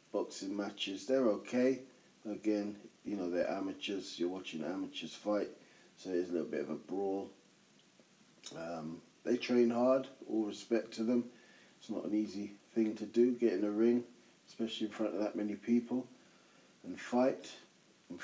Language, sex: English, male